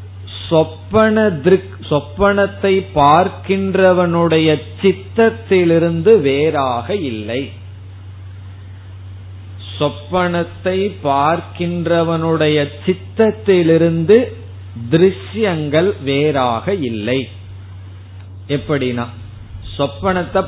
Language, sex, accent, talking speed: Tamil, male, native, 40 wpm